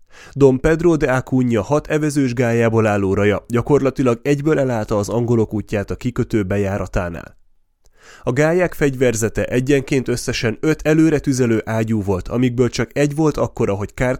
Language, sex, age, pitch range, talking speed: Hungarian, male, 30-49, 105-140 Hz, 150 wpm